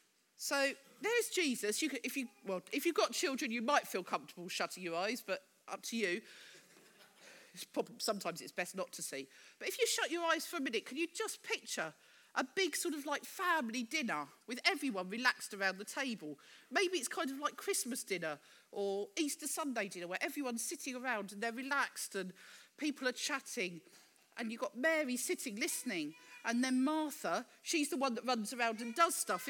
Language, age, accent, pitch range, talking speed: English, 40-59, British, 215-330 Hz, 185 wpm